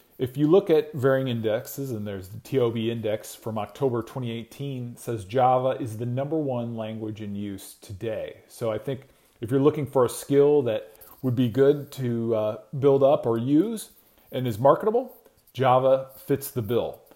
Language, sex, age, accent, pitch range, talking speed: English, male, 40-59, American, 115-140 Hz, 180 wpm